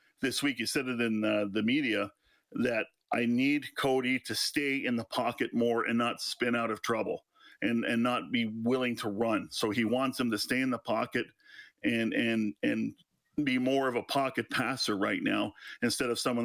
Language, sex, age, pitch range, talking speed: English, male, 40-59, 120-165 Hz, 200 wpm